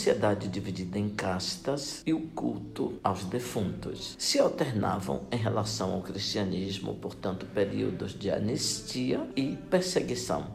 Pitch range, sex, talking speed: 95-125 Hz, male, 120 wpm